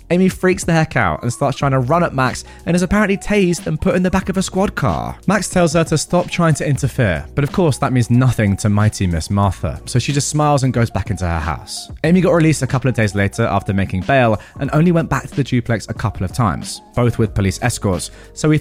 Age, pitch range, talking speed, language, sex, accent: 20-39, 110-155 Hz, 260 wpm, English, male, British